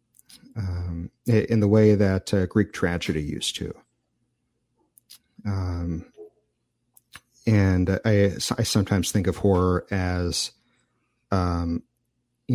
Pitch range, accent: 85-110 Hz, American